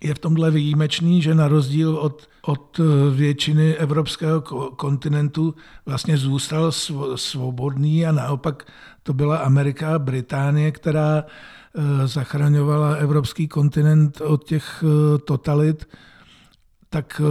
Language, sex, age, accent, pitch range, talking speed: Czech, male, 50-69, native, 140-155 Hz, 100 wpm